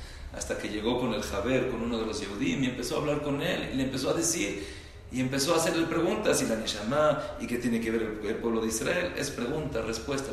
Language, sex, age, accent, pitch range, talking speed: English, male, 40-59, Mexican, 95-125 Hz, 250 wpm